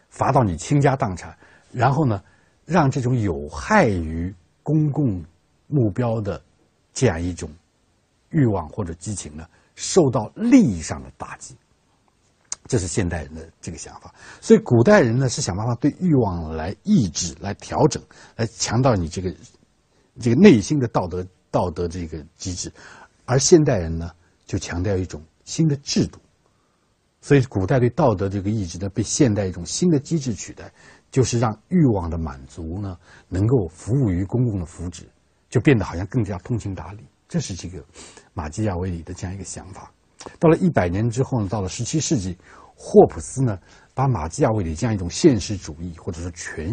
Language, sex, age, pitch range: Chinese, male, 60-79, 85-130 Hz